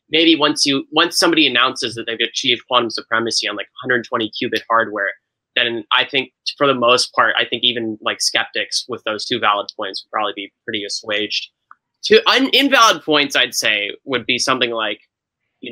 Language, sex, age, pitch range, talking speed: English, male, 20-39, 115-150 Hz, 185 wpm